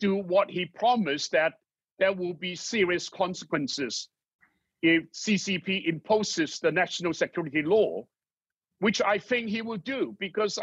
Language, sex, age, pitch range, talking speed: English, male, 60-79, 180-220 Hz, 130 wpm